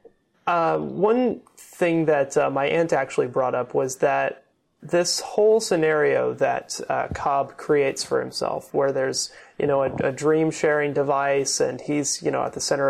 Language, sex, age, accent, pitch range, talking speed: English, male, 30-49, American, 140-170 Hz, 170 wpm